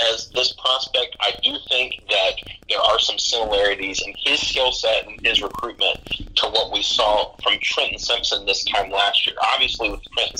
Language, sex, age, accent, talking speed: English, male, 30-49, American, 185 wpm